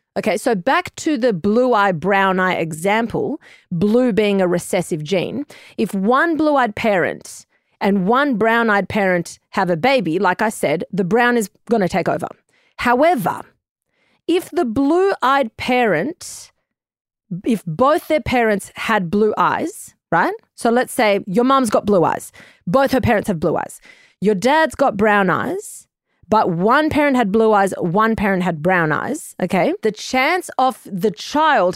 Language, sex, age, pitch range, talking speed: English, female, 30-49, 185-255 Hz, 155 wpm